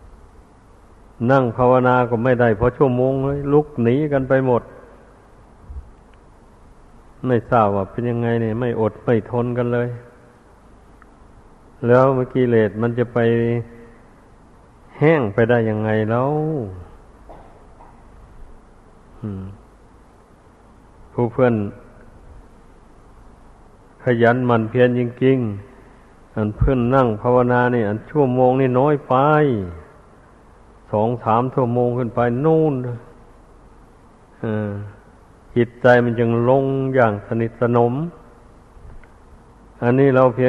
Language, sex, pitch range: Thai, male, 110-125 Hz